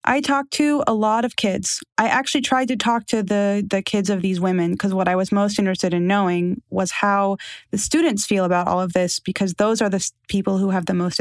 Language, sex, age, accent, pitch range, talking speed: English, female, 20-39, American, 175-220 Hz, 240 wpm